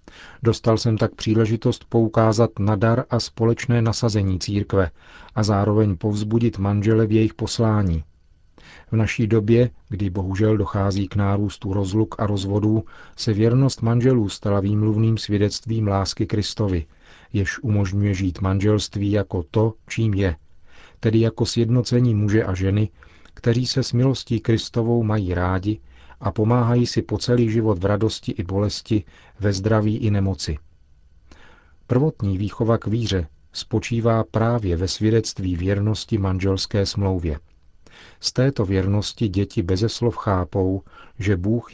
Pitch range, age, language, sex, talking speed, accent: 95-115 Hz, 40-59, Czech, male, 130 wpm, native